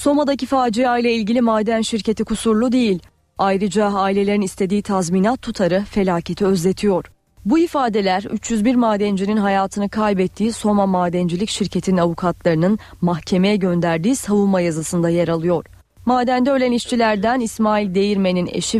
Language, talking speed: Turkish, 120 wpm